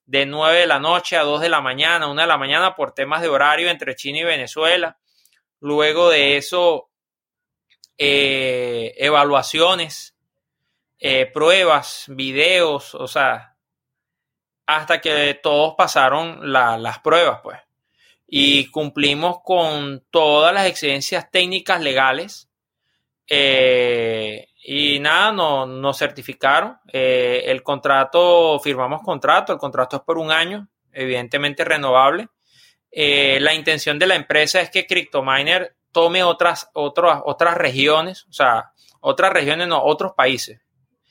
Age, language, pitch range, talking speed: 30-49, Spanish, 140-175 Hz, 125 wpm